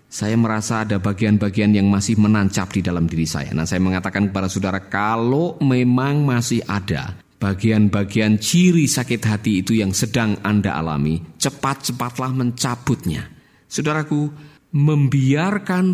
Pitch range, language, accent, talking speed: 100-130 Hz, Indonesian, native, 125 wpm